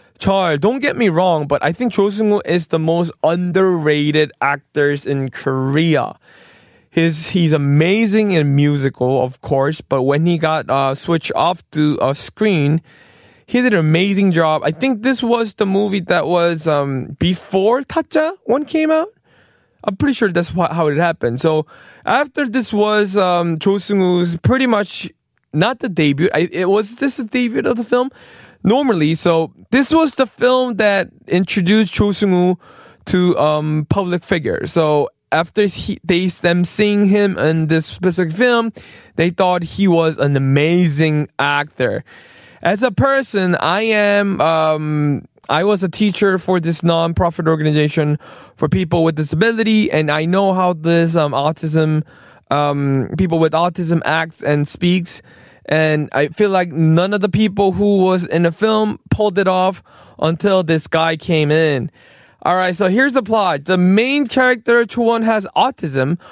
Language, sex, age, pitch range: Korean, male, 20-39, 155-205 Hz